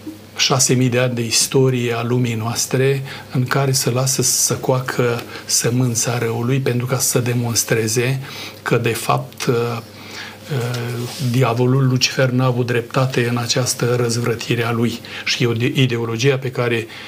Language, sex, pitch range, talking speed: Romanian, male, 120-135 Hz, 130 wpm